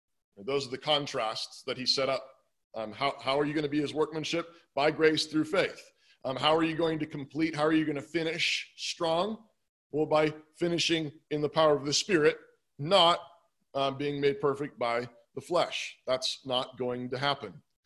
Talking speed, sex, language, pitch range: 195 wpm, male, English, 125-165 Hz